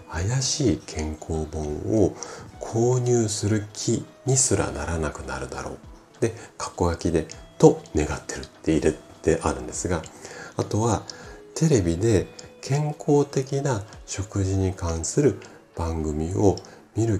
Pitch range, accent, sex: 80-120 Hz, native, male